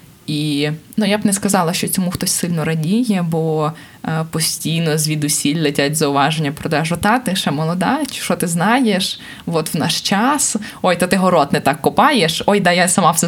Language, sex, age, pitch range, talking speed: Ukrainian, female, 20-39, 155-190 Hz, 180 wpm